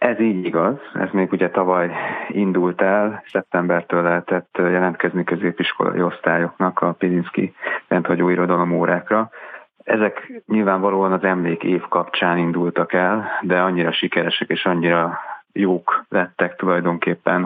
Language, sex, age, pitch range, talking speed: Hungarian, male, 30-49, 85-90 Hz, 115 wpm